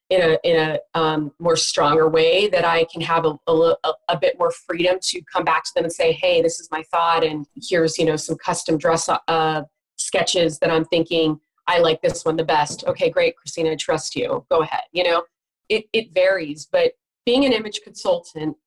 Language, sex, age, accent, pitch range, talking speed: English, female, 30-49, American, 160-200 Hz, 210 wpm